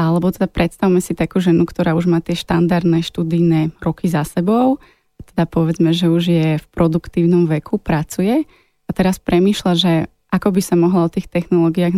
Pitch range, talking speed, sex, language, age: 170-195 Hz, 175 wpm, female, Slovak, 20-39